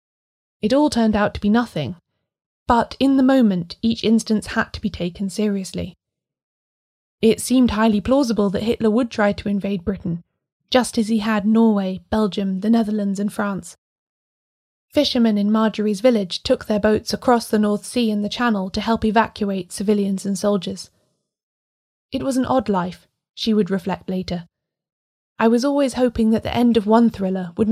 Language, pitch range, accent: English, 190-230 Hz, British